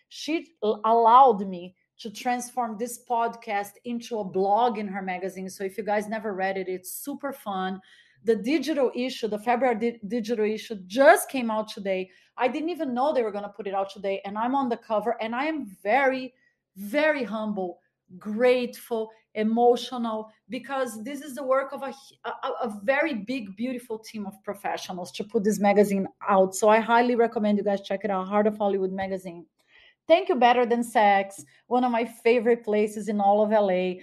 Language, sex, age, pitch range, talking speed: English, female, 30-49, 195-240 Hz, 185 wpm